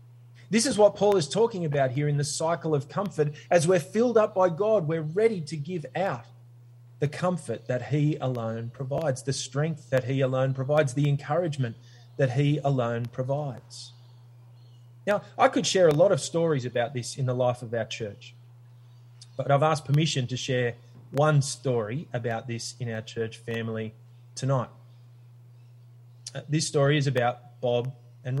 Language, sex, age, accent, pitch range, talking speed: English, male, 20-39, Australian, 120-150 Hz, 165 wpm